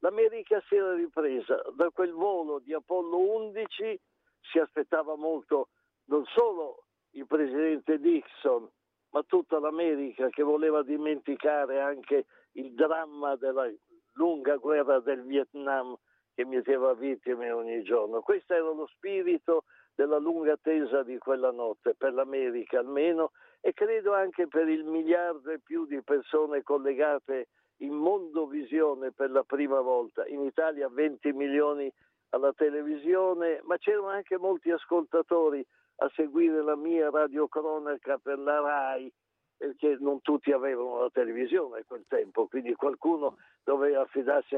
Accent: native